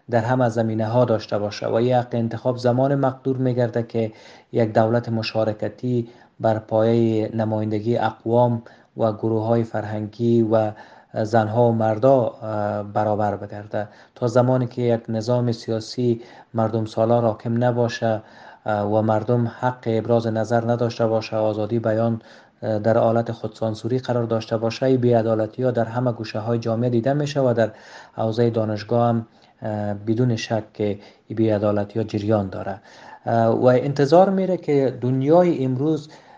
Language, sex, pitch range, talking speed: German, male, 110-120 Hz, 135 wpm